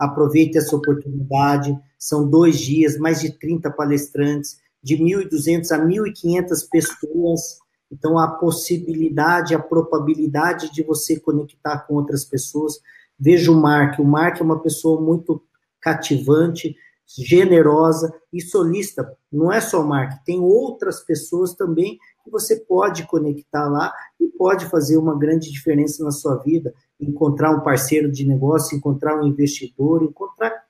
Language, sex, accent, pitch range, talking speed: Portuguese, male, Brazilian, 150-170 Hz, 140 wpm